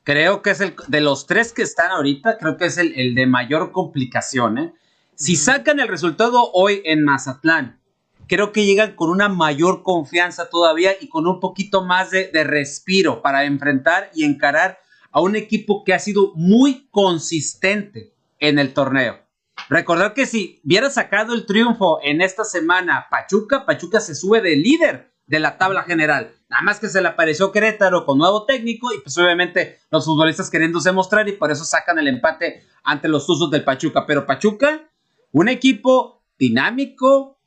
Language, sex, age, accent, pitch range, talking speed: Spanish, male, 40-59, Mexican, 165-235 Hz, 175 wpm